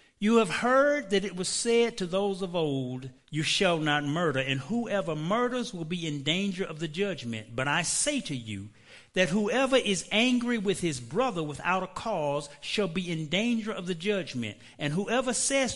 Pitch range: 145-200 Hz